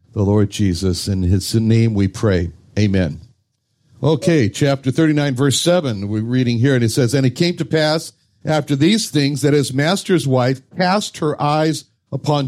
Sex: male